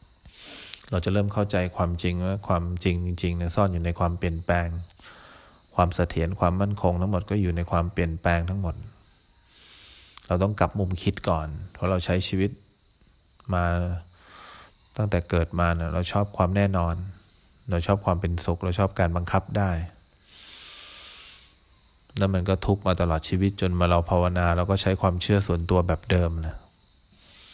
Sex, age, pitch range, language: male, 20-39, 85-95 Hz, English